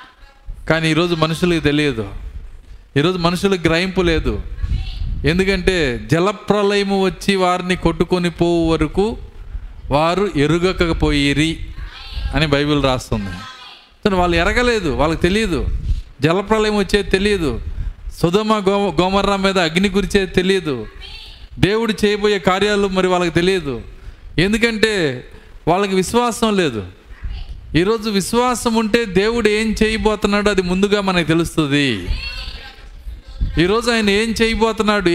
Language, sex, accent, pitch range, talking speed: Telugu, male, native, 125-205 Hz, 100 wpm